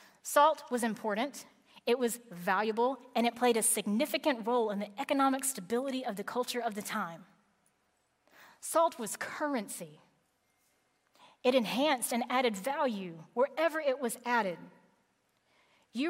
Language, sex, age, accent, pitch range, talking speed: English, female, 30-49, American, 205-260 Hz, 130 wpm